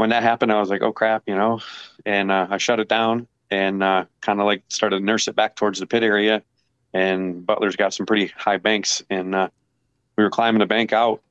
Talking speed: 240 wpm